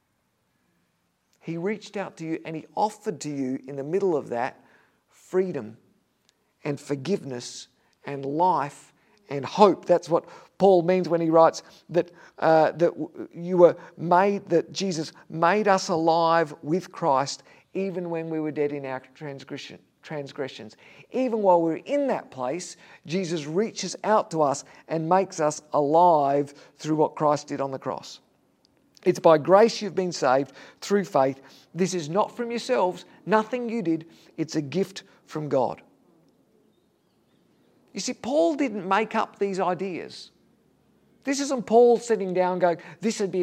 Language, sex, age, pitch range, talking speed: English, male, 50-69, 155-210 Hz, 150 wpm